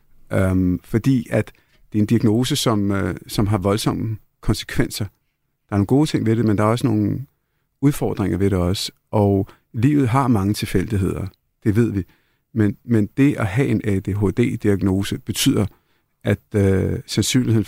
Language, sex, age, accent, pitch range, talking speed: Danish, male, 50-69, native, 100-125 Hz, 165 wpm